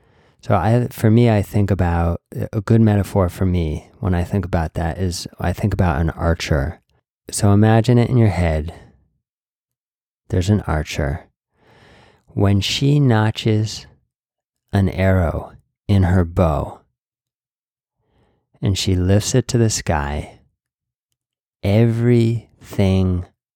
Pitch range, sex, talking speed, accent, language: 85-110 Hz, male, 120 wpm, American, English